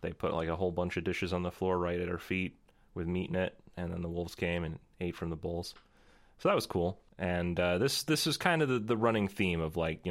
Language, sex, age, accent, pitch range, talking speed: English, male, 30-49, American, 85-100 Hz, 280 wpm